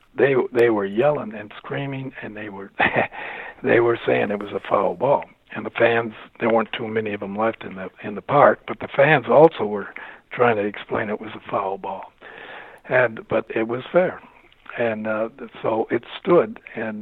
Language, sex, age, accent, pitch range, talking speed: English, male, 60-79, American, 110-125 Hz, 200 wpm